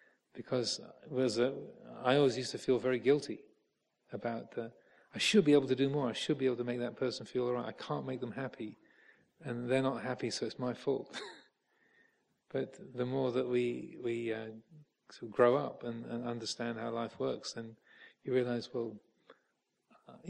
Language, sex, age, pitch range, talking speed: English, male, 40-59, 115-130 Hz, 190 wpm